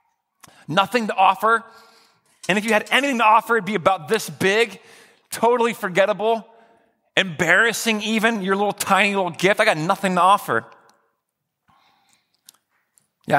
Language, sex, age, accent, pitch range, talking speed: English, male, 40-59, American, 170-225 Hz, 135 wpm